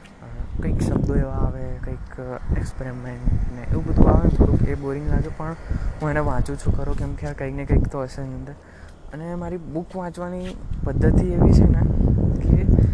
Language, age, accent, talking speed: Gujarati, 20-39, native, 170 wpm